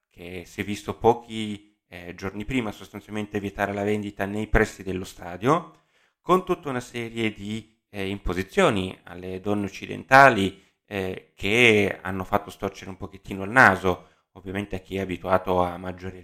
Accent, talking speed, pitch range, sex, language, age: native, 155 wpm, 95-115 Hz, male, Italian, 30-49